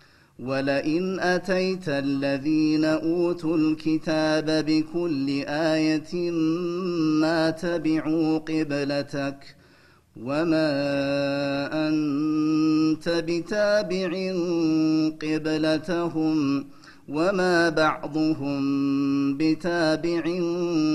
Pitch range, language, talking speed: 140-160 Hz, Amharic, 50 wpm